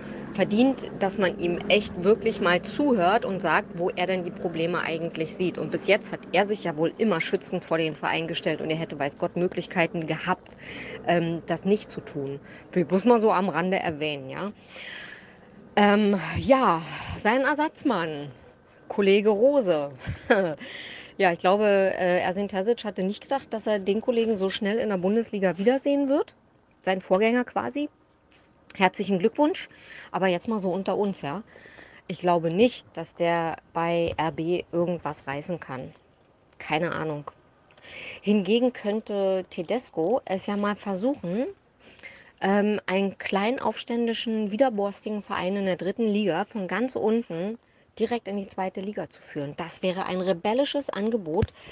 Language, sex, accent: German, female, German